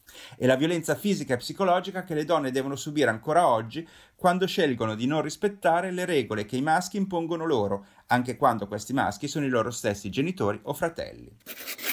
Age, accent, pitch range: 30-49, native, 120-190 Hz